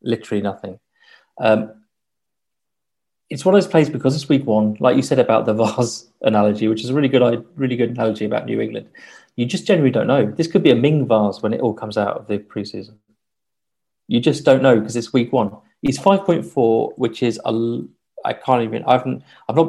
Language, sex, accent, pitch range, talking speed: English, male, British, 110-140 Hz, 215 wpm